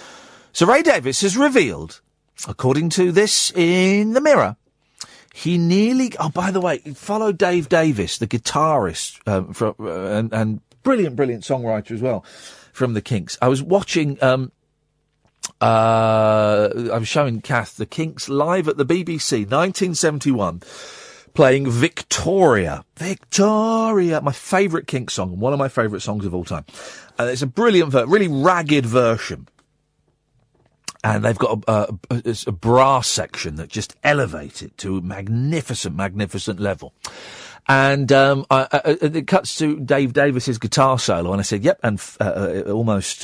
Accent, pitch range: British, 110-170 Hz